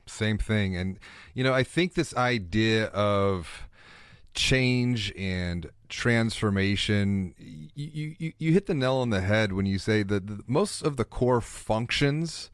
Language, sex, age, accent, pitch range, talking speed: English, male, 30-49, American, 95-120 Hz, 155 wpm